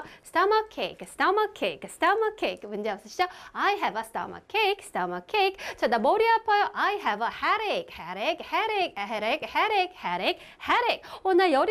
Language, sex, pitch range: Korean, female, 280-420 Hz